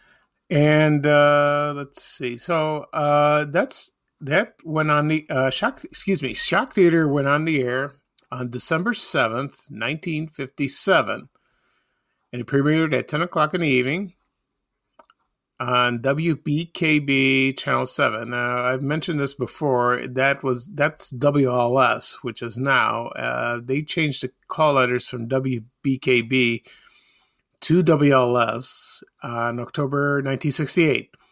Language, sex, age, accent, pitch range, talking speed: English, male, 50-69, American, 125-150 Hz, 125 wpm